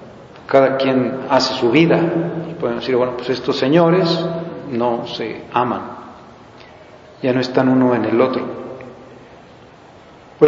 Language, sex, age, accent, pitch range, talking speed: Spanish, male, 40-59, Mexican, 125-155 Hz, 130 wpm